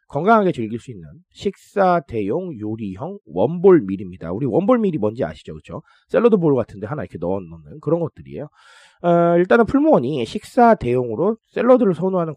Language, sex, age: Korean, male, 30-49